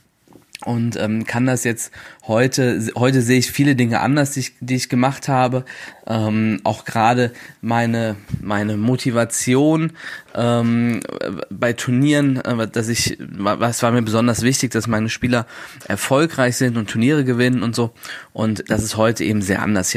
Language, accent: German, German